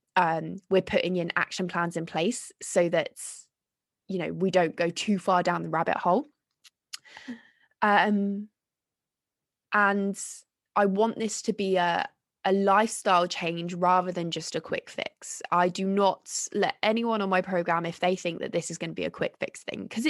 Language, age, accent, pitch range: English, 20-39, British, 180-230 Hz